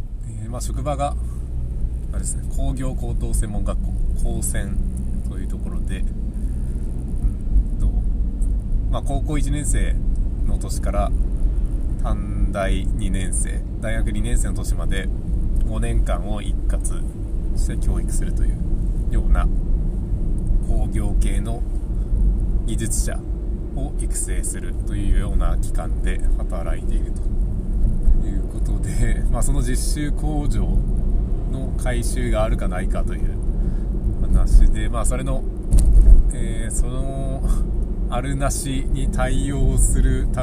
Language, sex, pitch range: Japanese, male, 80-105 Hz